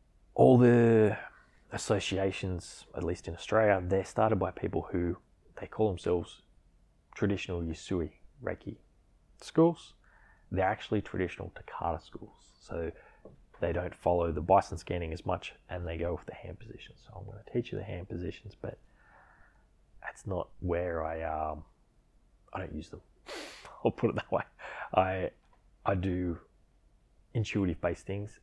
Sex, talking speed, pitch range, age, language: male, 145 wpm, 85-105 Hz, 20-39, English